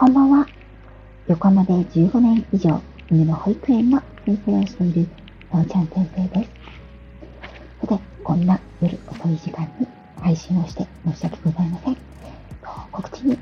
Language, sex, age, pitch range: Japanese, female, 40-59, 170-215 Hz